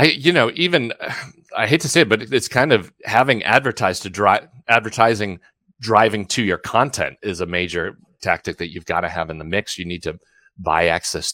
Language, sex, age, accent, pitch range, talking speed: English, male, 30-49, American, 85-115 Hz, 200 wpm